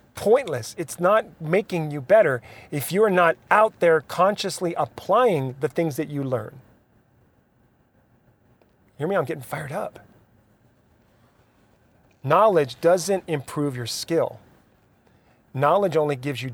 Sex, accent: male, American